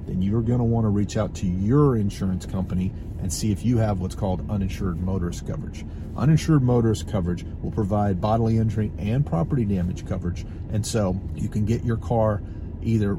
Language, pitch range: English, 95-115 Hz